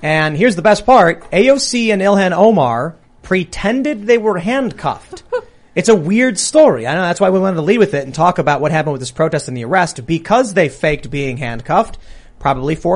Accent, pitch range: American, 130-185 Hz